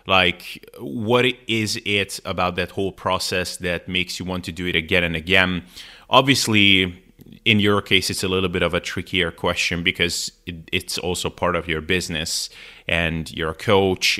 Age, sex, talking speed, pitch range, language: 20-39, male, 175 wpm, 85-100 Hz, English